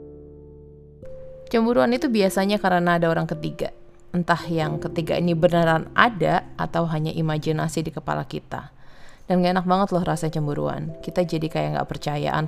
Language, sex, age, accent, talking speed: Indonesian, female, 20-39, native, 150 wpm